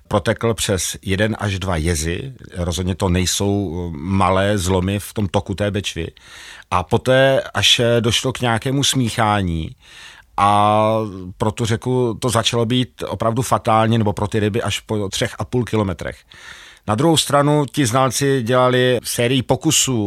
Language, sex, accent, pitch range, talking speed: Czech, male, native, 105-125 Hz, 150 wpm